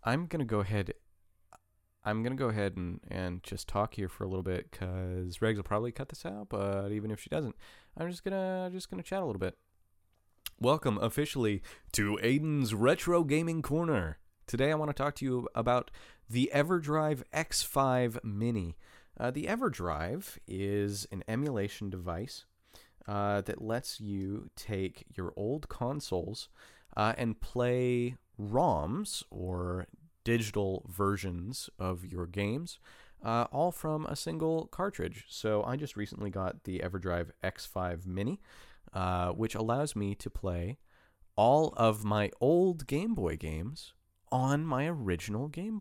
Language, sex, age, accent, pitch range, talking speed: English, male, 30-49, American, 95-130 Hz, 150 wpm